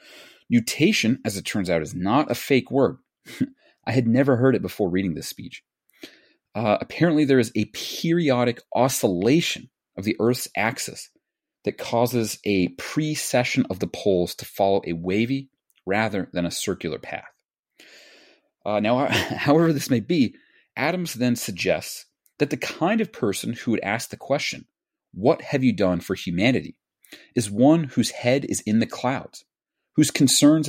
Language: English